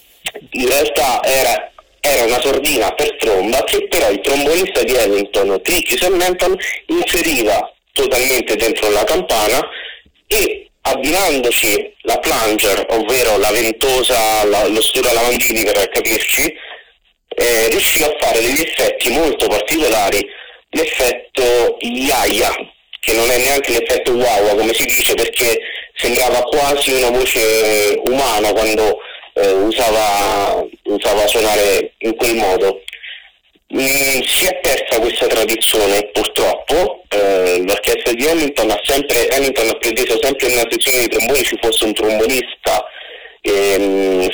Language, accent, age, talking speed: Italian, native, 40-59, 125 wpm